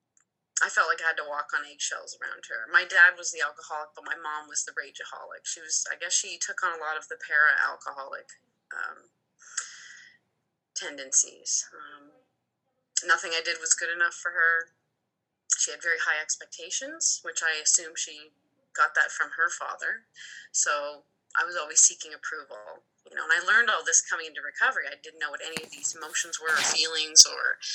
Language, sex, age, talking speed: English, female, 20-39, 190 wpm